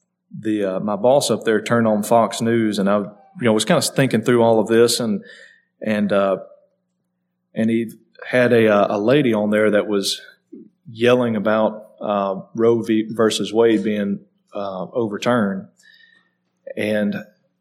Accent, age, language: American, 40-59, English